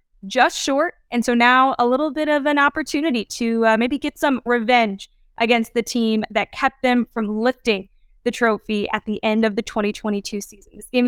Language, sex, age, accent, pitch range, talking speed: English, female, 10-29, American, 225-270 Hz, 195 wpm